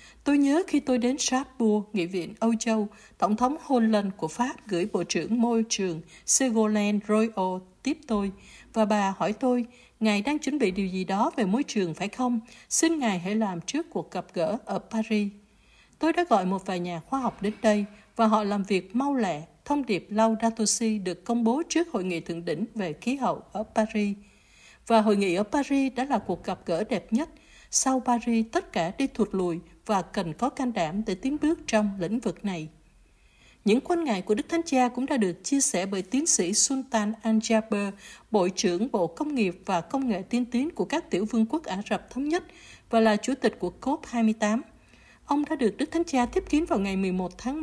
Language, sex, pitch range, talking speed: Vietnamese, female, 200-260 Hz, 210 wpm